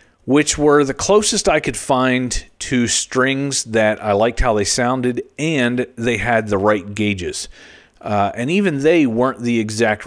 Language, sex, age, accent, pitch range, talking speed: English, male, 40-59, American, 100-125 Hz, 165 wpm